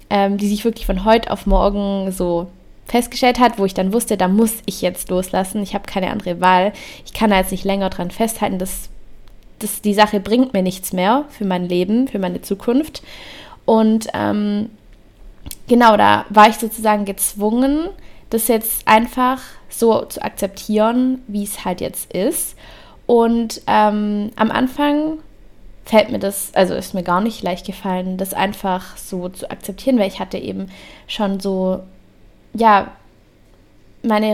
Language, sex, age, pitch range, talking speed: German, female, 20-39, 190-225 Hz, 160 wpm